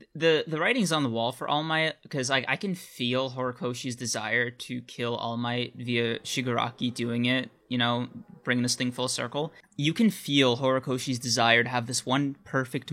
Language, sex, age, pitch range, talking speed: English, male, 20-39, 120-140 Hz, 190 wpm